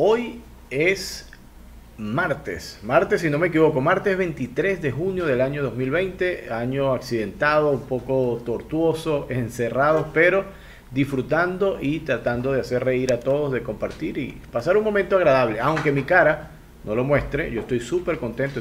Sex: male